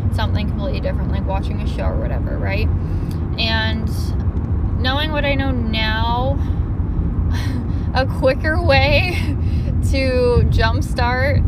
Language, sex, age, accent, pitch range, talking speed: English, female, 10-29, American, 85-100 Hz, 115 wpm